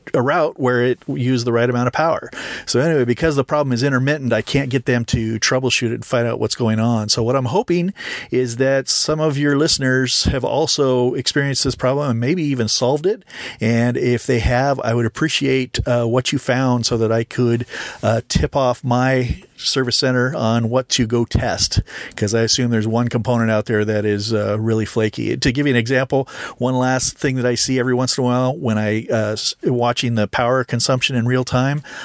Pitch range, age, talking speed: 115-135 Hz, 40-59, 215 wpm